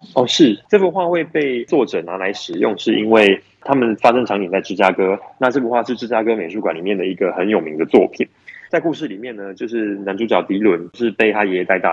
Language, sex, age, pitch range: Chinese, male, 20-39, 105-160 Hz